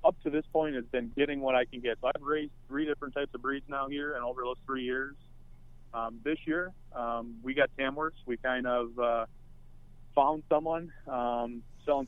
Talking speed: 205 wpm